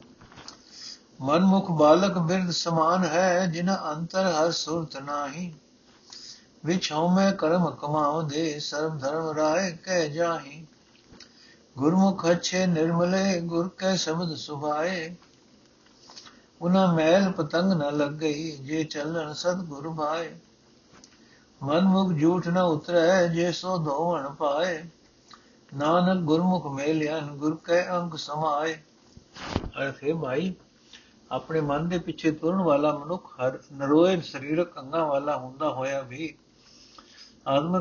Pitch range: 145-175 Hz